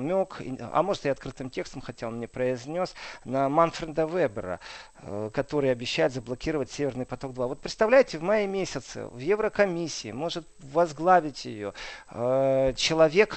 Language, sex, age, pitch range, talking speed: Russian, male, 40-59, 135-175 Hz, 130 wpm